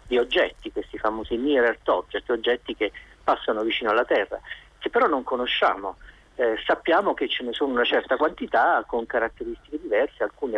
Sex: male